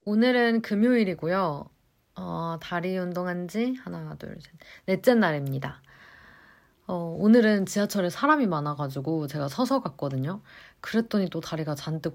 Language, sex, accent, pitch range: Korean, female, native, 150-200 Hz